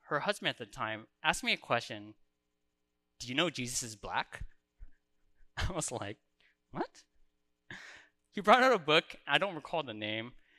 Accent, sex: American, male